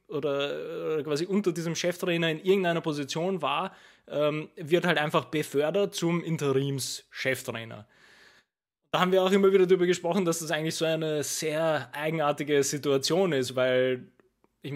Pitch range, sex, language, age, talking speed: 135-165 Hz, male, German, 20-39, 140 wpm